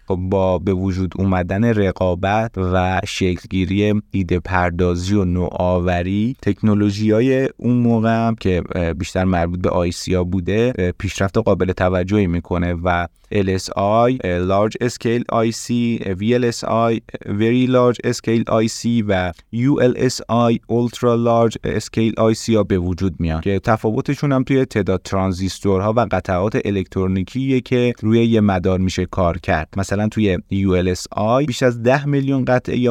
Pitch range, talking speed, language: 90-115 Hz, 135 wpm, Persian